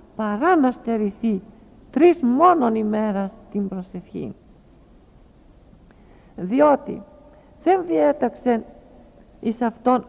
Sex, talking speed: female, 75 wpm